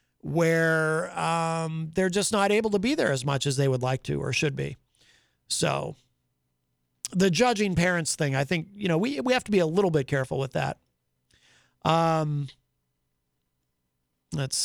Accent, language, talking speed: American, English, 170 wpm